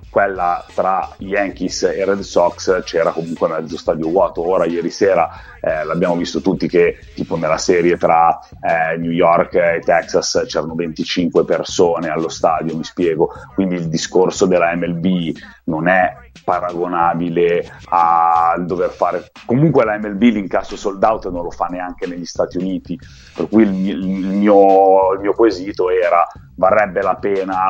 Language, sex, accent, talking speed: Italian, male, native, 155 wpm